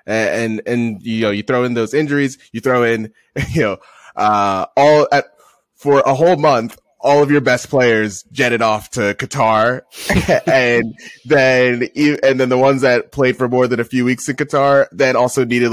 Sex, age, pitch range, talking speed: male, 20-39, 105-130 Hz, 190 wpm